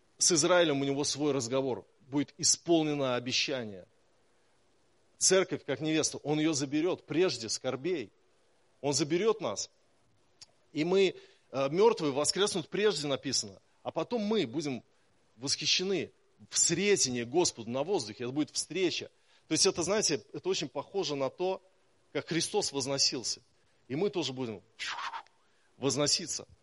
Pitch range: 135-185 Hz